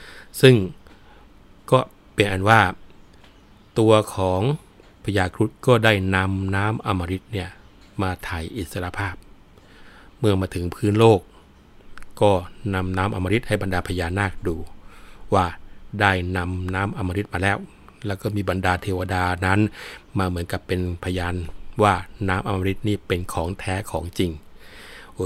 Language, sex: Thai, male